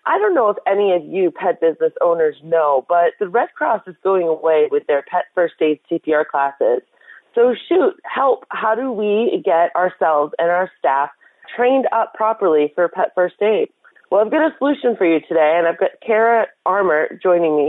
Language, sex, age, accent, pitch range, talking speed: English, female, 30-49, American, 170-250 Hz, 195 wpm